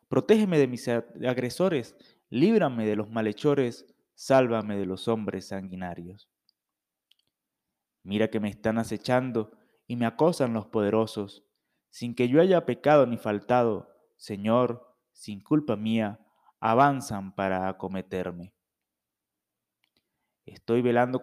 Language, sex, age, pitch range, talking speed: Spanish, male, 20-39, 105-130 Hz, 110 wpm